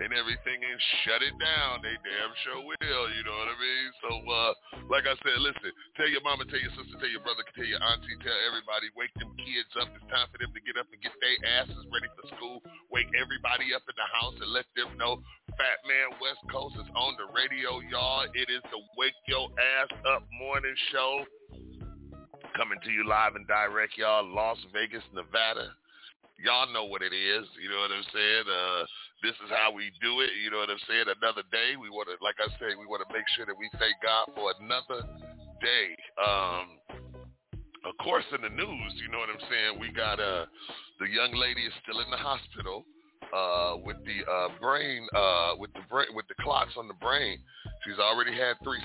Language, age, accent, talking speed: English, 40-59, American, 210 wpm